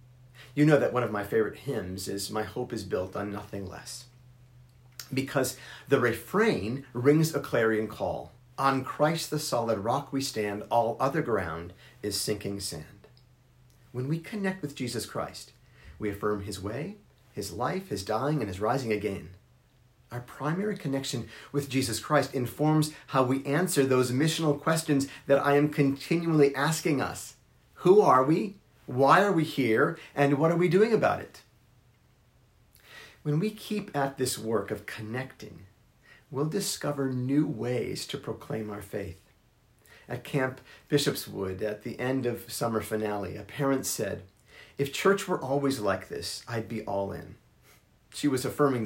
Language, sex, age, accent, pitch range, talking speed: English, male, 40-59, American, 110-145 Hz, 155 wpm